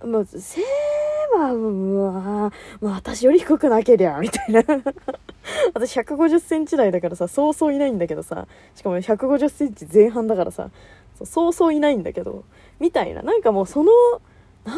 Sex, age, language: female, 20-39, Japanese